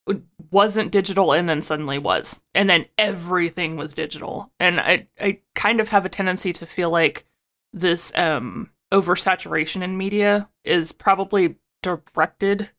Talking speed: 140 wpm